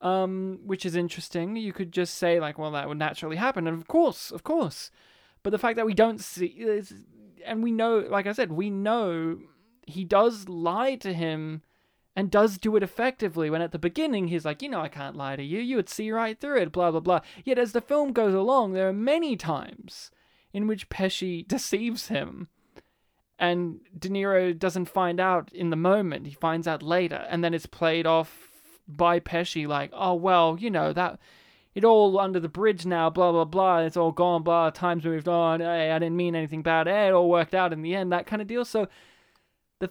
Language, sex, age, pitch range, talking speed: English, male, 20-39, 165-210 Hz, 215 wpm